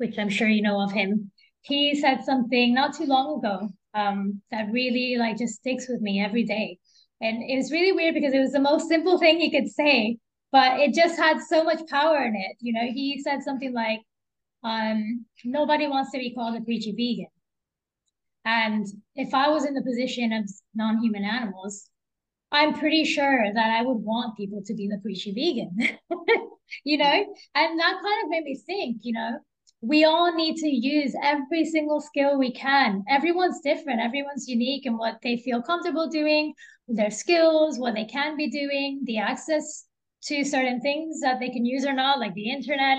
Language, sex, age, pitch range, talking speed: English, female, 20-39, 225-295 Hz, 195 wpm